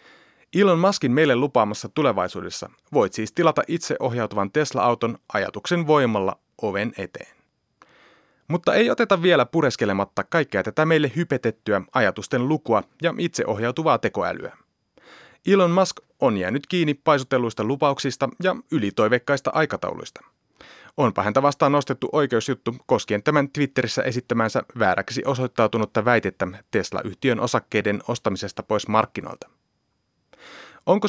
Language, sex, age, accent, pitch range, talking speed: Finnish, male, 30-49, native, 110-160 Hz, 110 wpm